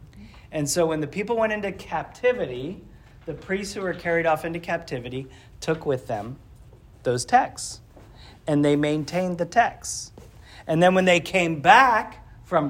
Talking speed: 155 wpm